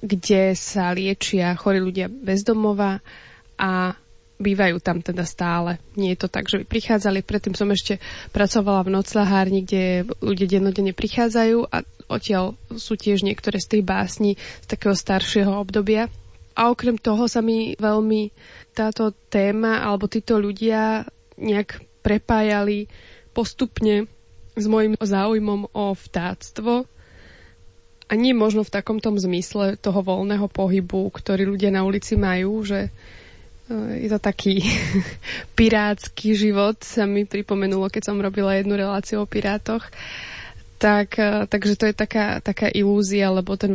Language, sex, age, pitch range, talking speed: Slovak, female, 20-39, 190-215 Hz, 135 wpm